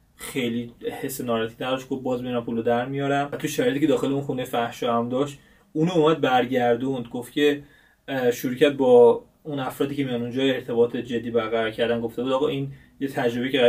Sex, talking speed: male, 180 wpm